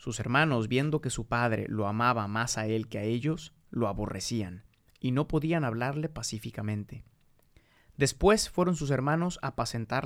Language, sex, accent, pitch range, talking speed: Spanish, male, Mexican, 115-145 Hz, 160 wpm